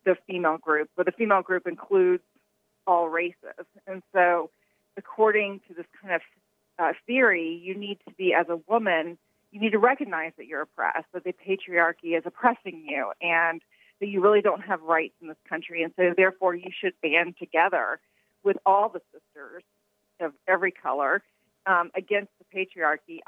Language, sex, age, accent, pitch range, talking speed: English, female, 40-59, American, 170-200 Hz, 175 wpm